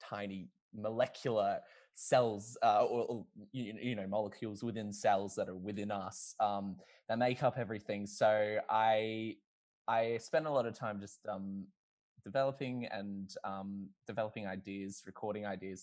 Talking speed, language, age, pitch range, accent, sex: 145 wpm, English, 10-29, 100-125 Hz, Australian, male